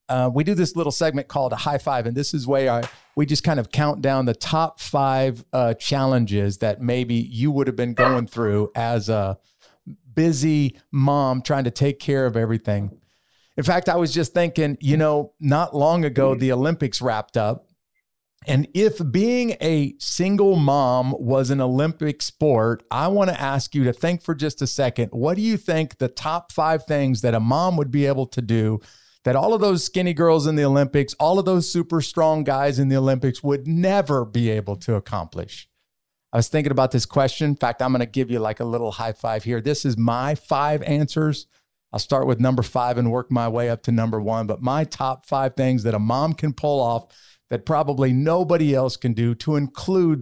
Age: 50-69